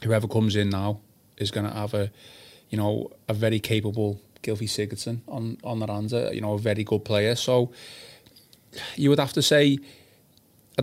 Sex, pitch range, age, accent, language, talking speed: male, 105-115 Hz, 20-39, British, English, 185 wpm